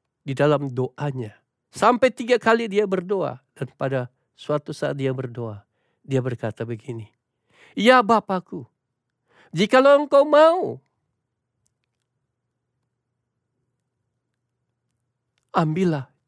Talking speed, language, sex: 85 wpm, Indonesian, male